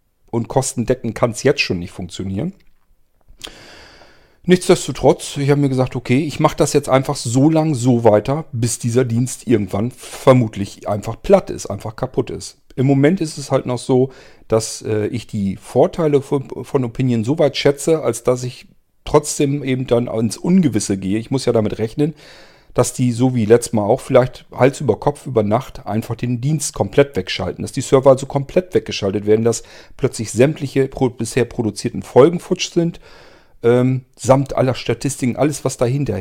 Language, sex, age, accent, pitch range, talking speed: German, male, 40-59, German, 110-140 Hz, 180 wpm